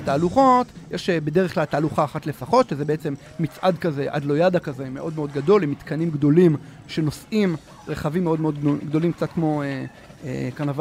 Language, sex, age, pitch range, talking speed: Hebrew, male, 30-49, 145-185 Hz, 155 wpm